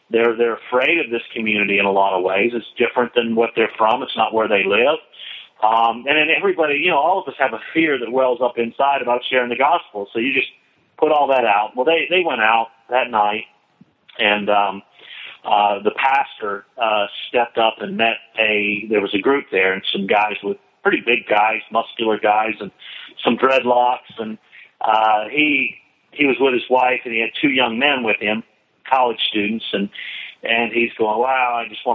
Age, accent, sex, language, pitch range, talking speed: 40-59, American, male, English, 105-130 Hz, 210 wpm